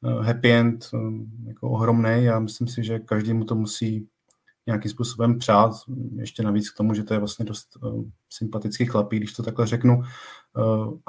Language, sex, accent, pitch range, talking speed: Czech, male, native, 105-115 Hz, 170 wpm